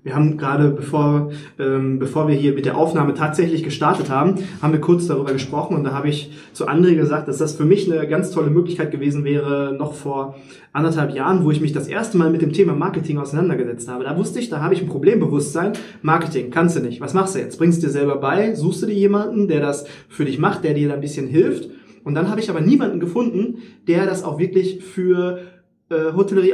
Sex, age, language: male, 20-39, German